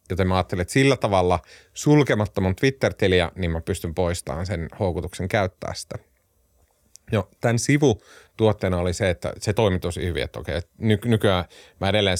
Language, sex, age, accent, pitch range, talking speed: Finnish, male, 30-49, native, 85-120 Hz, 155 wpm